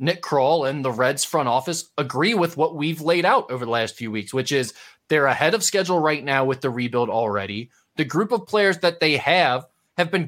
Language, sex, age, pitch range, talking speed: English, male, 20-39, 140-185 Hz, 230 wpm